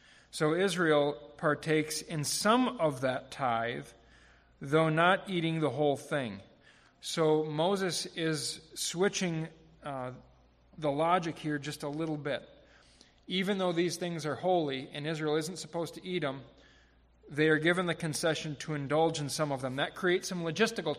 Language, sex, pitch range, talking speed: English, male, 140-170 Hz, 155 wpm